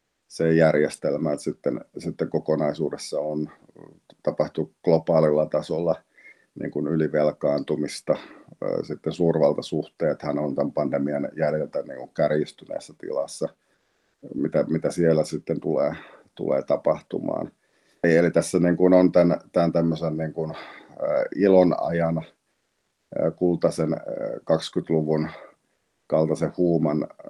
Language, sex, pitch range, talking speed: Finnish, male, 75-85 Hz, 95 wpm